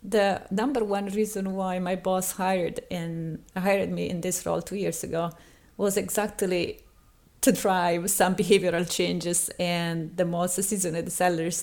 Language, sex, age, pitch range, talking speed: English, female, 30-49, 175-200 Hz, 150 wpm